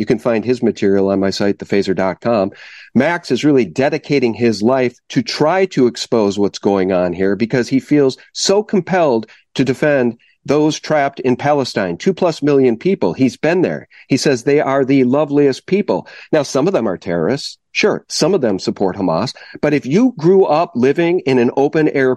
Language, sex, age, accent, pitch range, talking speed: English, male, 50-69, American, 130-200 Hz, 185 wpm